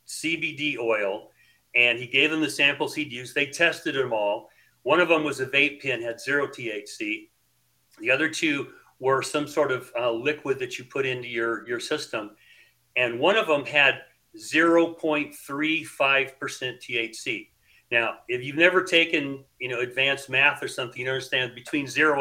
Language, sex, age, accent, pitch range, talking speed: English, male, 40-59, American, 130-165 Hz, 180 wpm